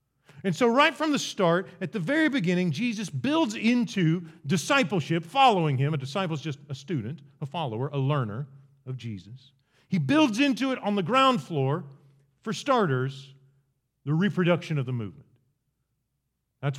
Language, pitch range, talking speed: English, 140-215 Hz, 155 wpm